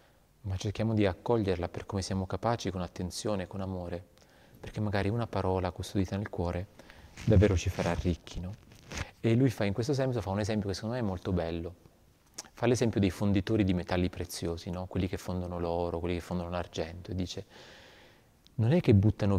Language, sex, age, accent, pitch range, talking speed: Italian, male, 30-49, native, 90-105 Hz, 190 wpm